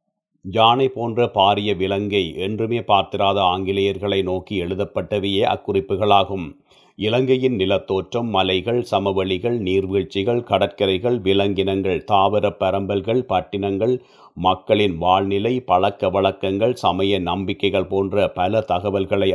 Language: Tamil